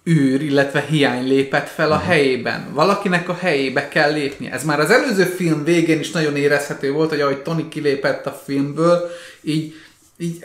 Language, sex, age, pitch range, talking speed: Hungarian, male, 30-49, 145-175 Hz, 170 wpm